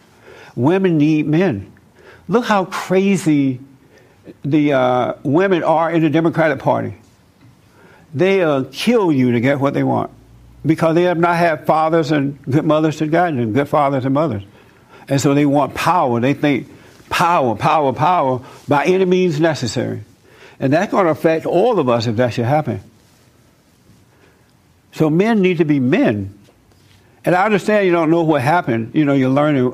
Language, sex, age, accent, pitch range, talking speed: English, male, 60-79, American, 120-160 Hz, 165 wpm